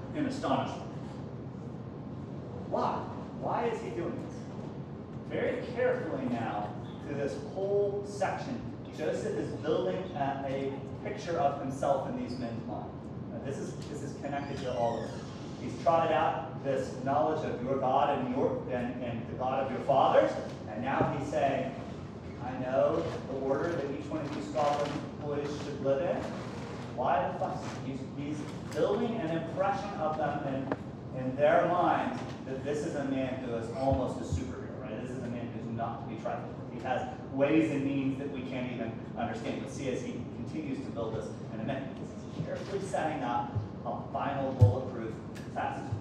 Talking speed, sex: 170 wpm, male